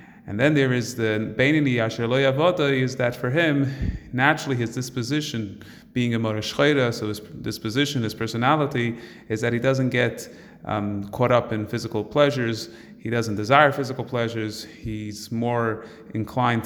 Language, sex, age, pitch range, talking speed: English, male, 30-49, 110-140 Hz, 150 wpm